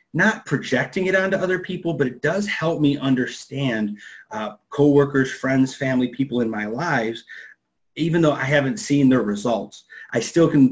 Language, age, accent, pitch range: English, 30-49, American, 115-145 Hz